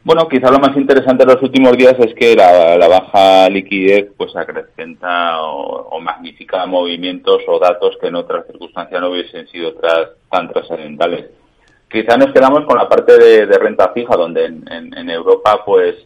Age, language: 30-49, Spanish